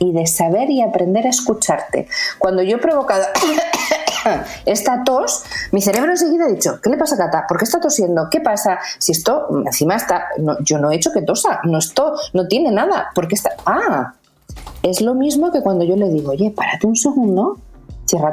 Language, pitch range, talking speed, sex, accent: Spanish, 170-265 Hz, 205 wpm, female, Spanish